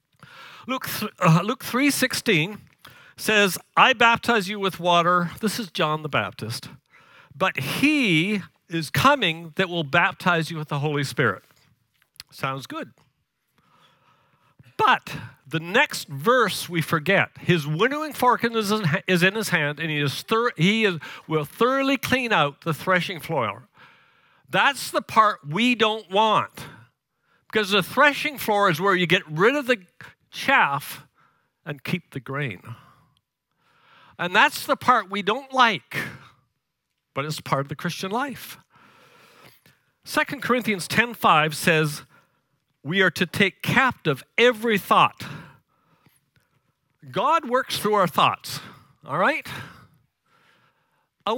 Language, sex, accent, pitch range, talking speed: English, male, American, 150-220 Hz, 125 wpm